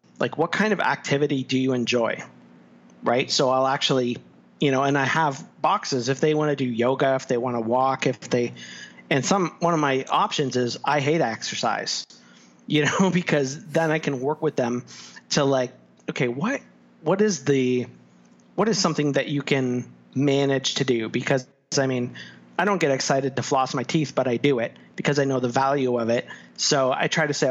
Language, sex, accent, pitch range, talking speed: English, male, American, 125-145 Hz, 205 wpm